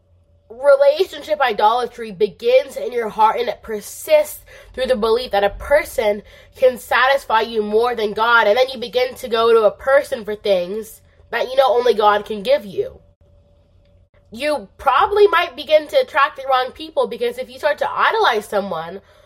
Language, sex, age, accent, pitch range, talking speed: English, female, 20-39, American, 200-285 Hz, 175 wpm